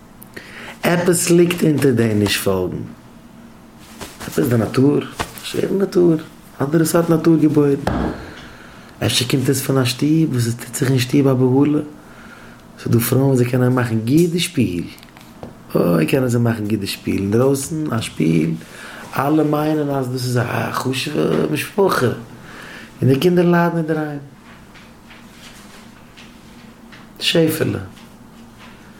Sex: male